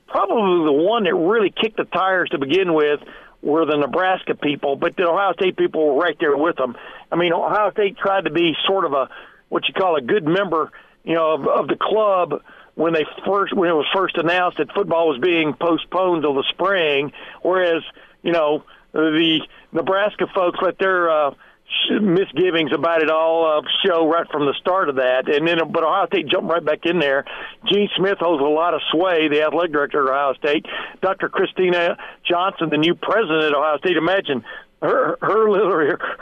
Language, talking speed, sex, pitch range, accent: English, 200 wpm, male, 155-195 Hz, American